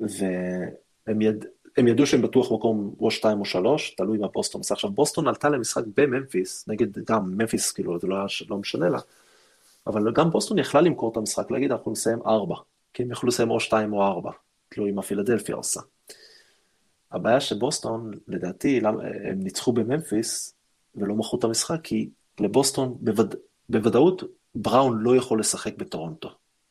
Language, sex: Hebrew, male